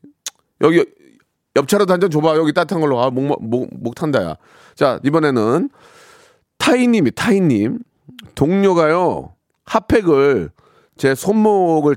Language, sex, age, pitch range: Korean, male, 40-59, 140-220 Hz